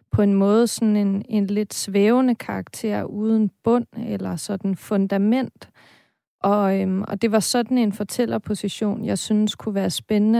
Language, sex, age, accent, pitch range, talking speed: Danish, female, 30-49, native, 195-220 Hz, 150 wpm